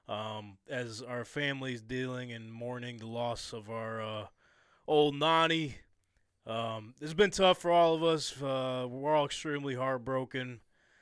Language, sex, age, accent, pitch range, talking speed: English, male, 20-39, American, 115-160 Hz, 145 wpm